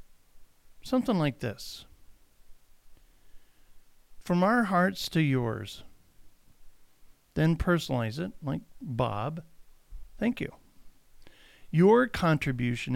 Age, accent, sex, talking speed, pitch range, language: 50-69, American, male, 80 wpm, 125-170 Hz, English